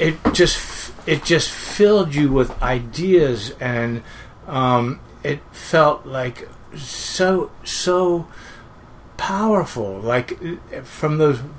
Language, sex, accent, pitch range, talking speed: English, male, American, 125-155 Hz, 100 wpm